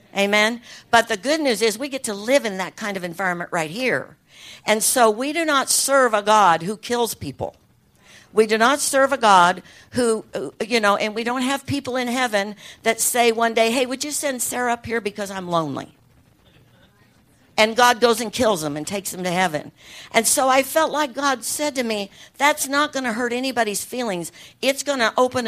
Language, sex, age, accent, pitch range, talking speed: English, female, 60-79, American, 190-245 Hz, 210 wpm